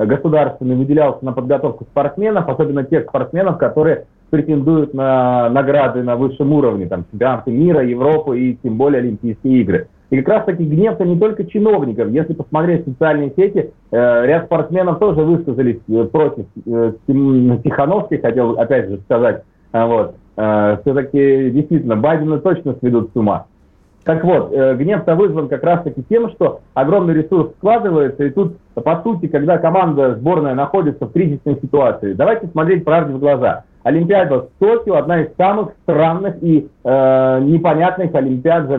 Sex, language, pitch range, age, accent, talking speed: male, Russian, 130-170 Hz, 30-49, native, 145 wpm